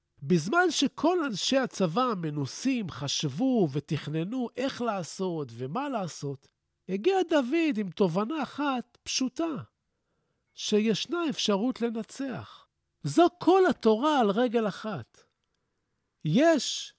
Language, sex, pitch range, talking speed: Hebrew, male, 165-260 Hz, 95 wpm